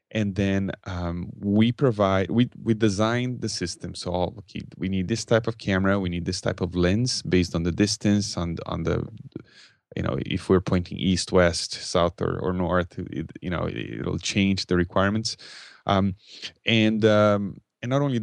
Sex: male